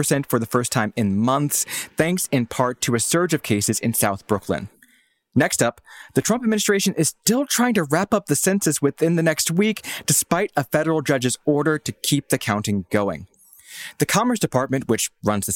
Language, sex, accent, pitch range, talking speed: English, male, American, 125-195 Hz, 195 wpm